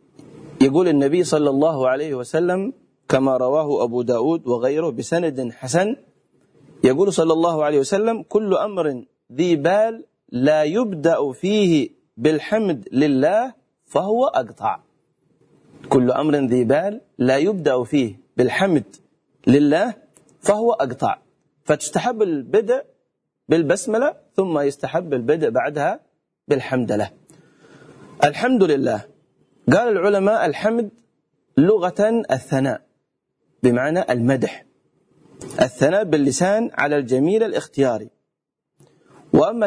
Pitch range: 140-210 Hz